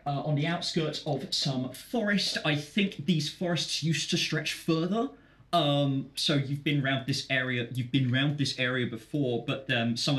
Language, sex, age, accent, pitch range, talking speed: English, male, 20-39, British, 115-150 Hz, 185 wpm